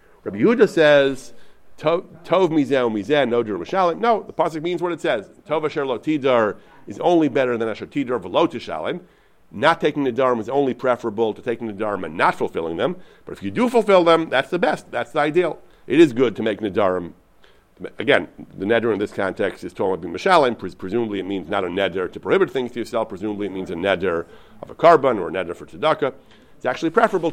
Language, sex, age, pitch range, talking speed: English, male, 50-69, 110-160 Hz, 195 wpm